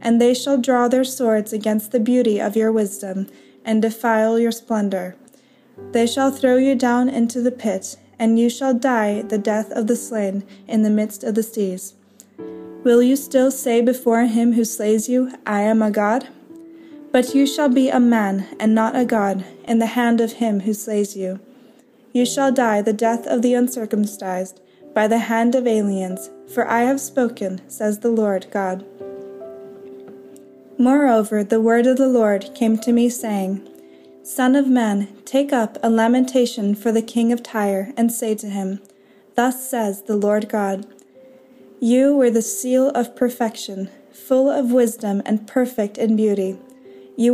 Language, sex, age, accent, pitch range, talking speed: English, female, 20-39, American, 205-245 Hz, 170 wpm